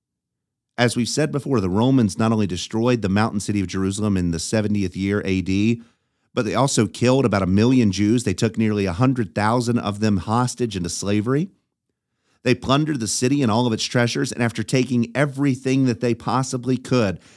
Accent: American